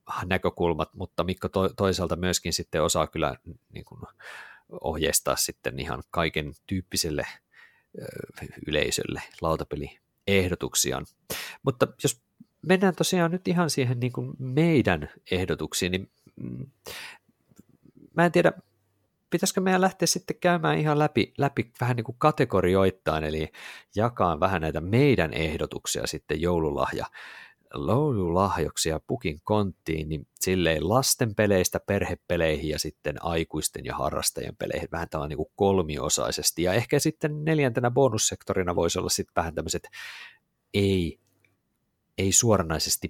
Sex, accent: male, native